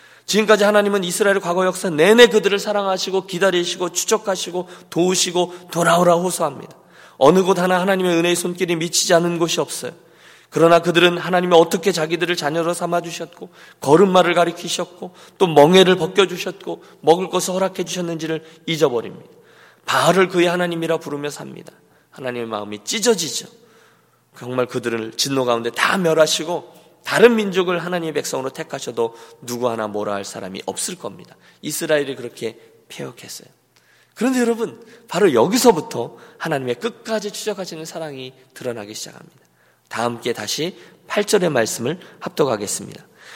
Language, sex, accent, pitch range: Korean, male, native, 140-185 Hz